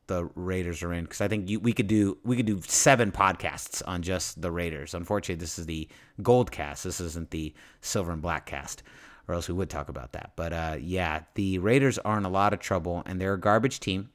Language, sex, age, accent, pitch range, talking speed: English, male, 30-49, American, 100-140 Hz, 240 wpm